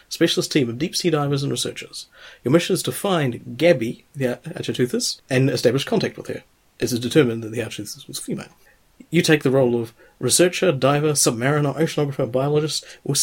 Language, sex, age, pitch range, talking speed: English, male, 30-49, 125-160 Hz, 175 wpm